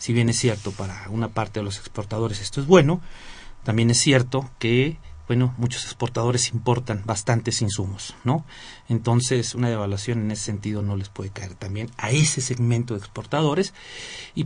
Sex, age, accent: male, 40-59, Mexican